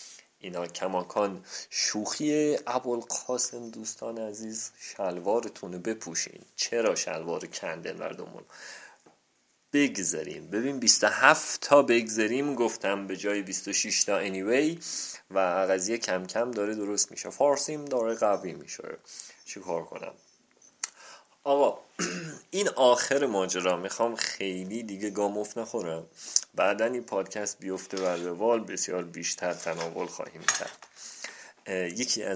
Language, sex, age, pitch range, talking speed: Persian, male, 30-49, 90-115 Hz, 110 wpm